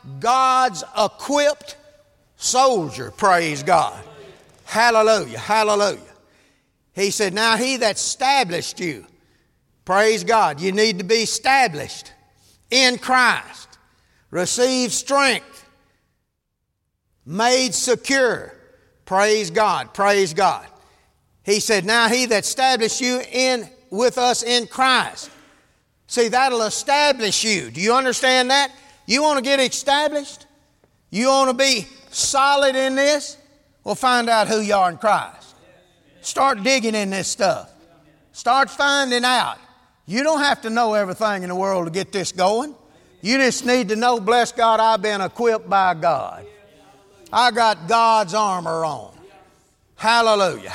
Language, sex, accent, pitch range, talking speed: English, male, American, 210-265 Hz, 130 wpm